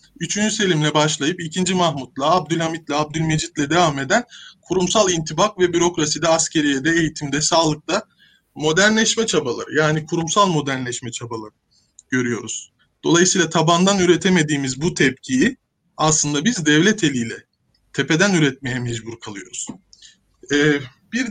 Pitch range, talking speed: 155-215 Hz, 105 wpm